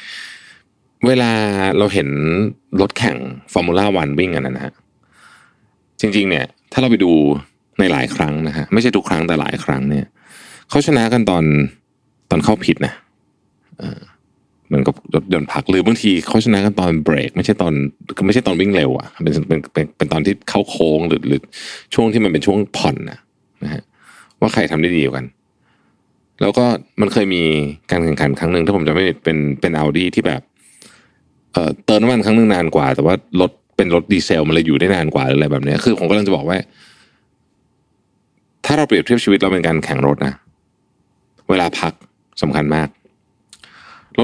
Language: Thai